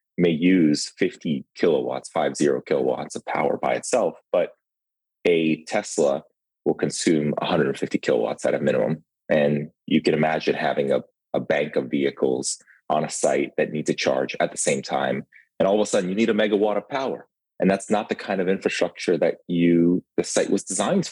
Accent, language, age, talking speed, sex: American, English, 30-49, 190 wpm, male